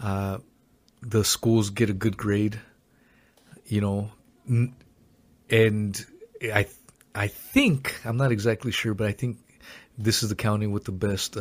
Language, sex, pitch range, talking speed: English, male, 105-120 Hz, 140 wpm